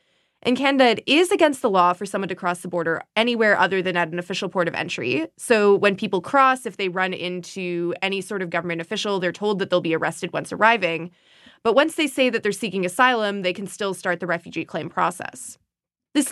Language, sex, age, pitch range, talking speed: English, female, 20-39, 180-245 Hz, 220 wpm